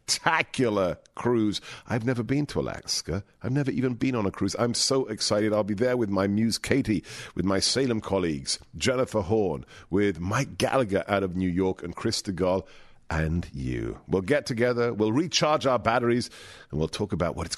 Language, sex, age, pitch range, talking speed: English, male, 50-69, 95-125 Hz, 190 wpm